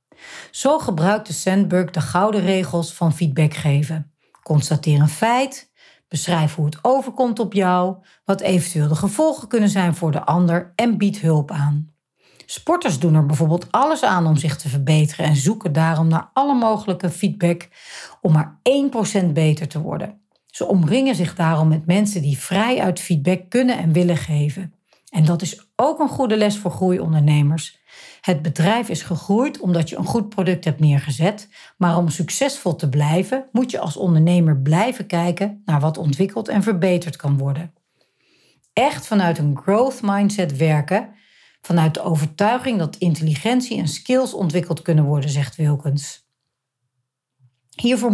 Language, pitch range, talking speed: Dutch, 155-210 Hz, 155 wpm